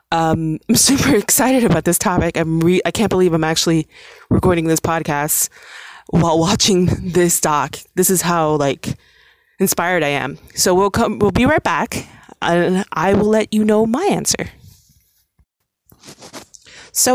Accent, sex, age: American, female, 20-39